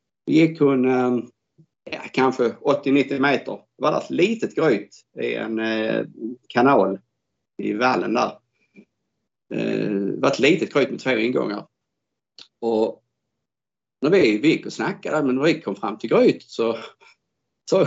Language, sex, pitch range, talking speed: Swedish, male, 110-135 Hz, 140 wpm